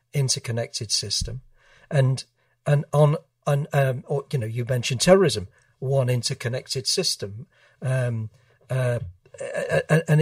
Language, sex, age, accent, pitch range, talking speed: English, male, 50-69, British, 125-150 Hz, 110 wpm